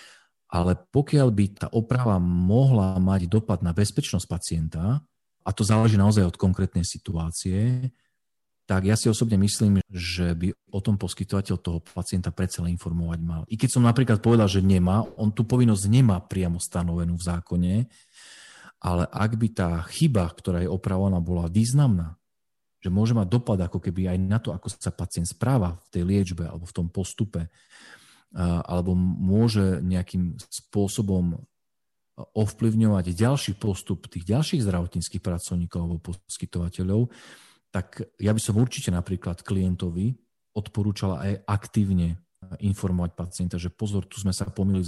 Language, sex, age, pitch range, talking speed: Slovak, male, 40-59, 90-105 Hz, 145 wpm